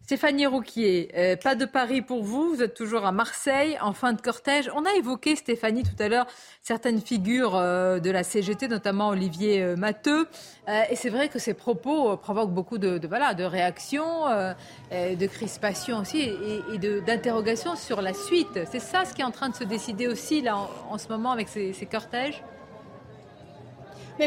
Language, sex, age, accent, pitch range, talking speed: French, female, 40-59, French, 215-310 Hz, 185 wpm